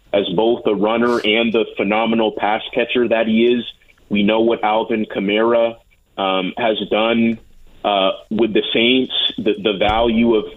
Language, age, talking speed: English, 30-49, 160 wpm